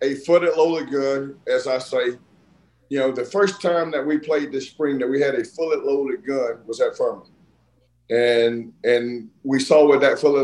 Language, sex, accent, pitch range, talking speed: English, male, American, 130-155 Hz, 195 wpm